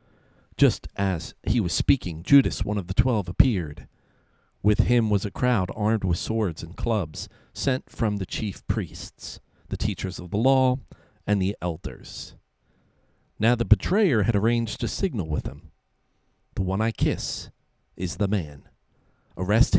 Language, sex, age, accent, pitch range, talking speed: English, male, 50-69, American, 90-115 Hz, 155 wpm